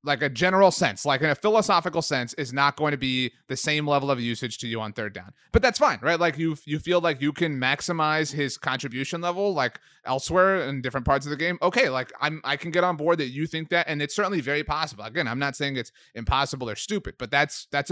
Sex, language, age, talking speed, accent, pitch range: male, English, 30-49, 255 wpm, American, 130-165 Hz